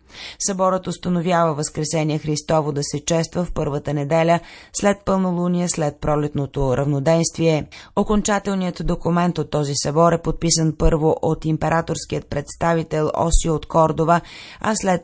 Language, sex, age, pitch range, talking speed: Bulgarian, female, 30-49, 150-175 Hz, 125 wpm